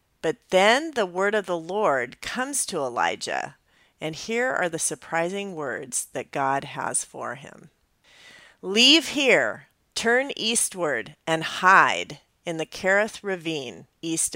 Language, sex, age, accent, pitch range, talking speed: English, female, 40-59, American, 155-215 Hz, 135 wpm